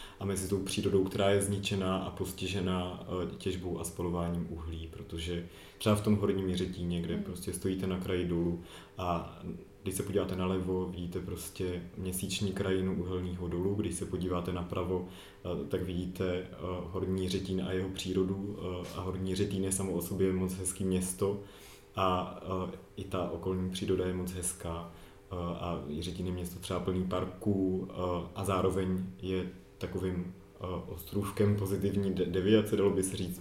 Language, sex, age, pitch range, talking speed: Czech, male, 30-49, 90-95 Hz, 155 wpm